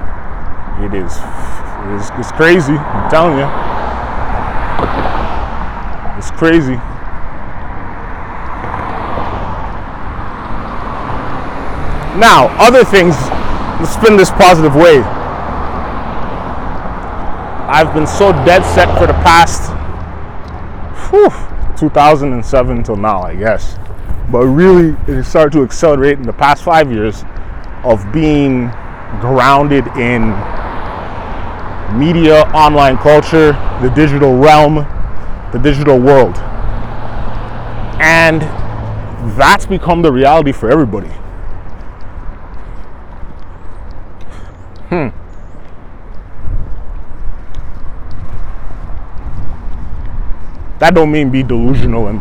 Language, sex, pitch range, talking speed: English, male, 90-135 Hz, 80 wpm